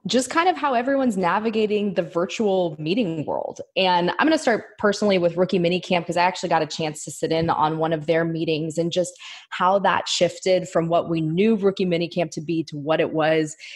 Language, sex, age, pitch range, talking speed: English, female, 20-39, 160-195 Hz, 220 wpm